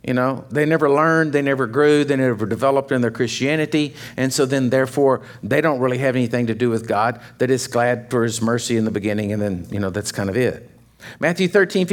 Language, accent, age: English, American, 50-69